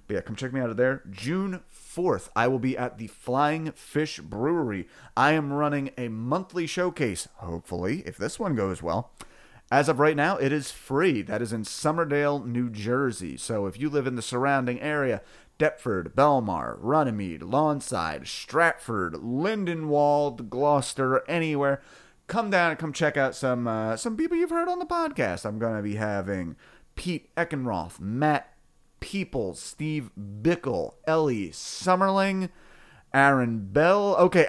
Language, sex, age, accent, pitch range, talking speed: English, male, 30-49, American, 115-150 Hz, 155 wpm